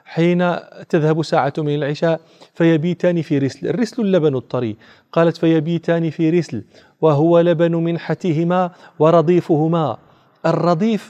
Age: 40-59